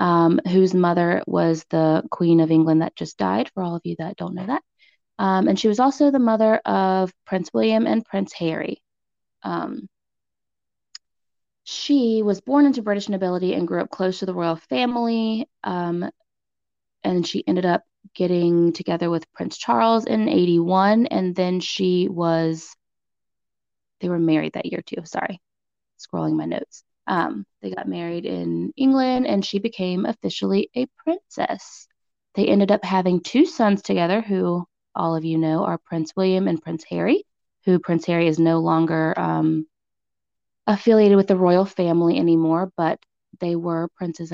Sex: female